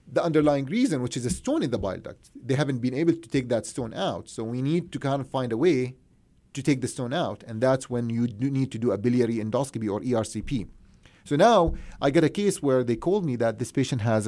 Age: 30-49